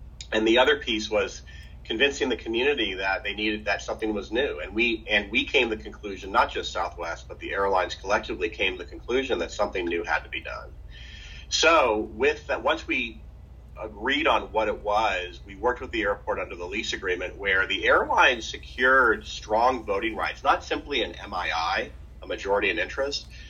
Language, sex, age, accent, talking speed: English, male, 40-59, American, 190 wpm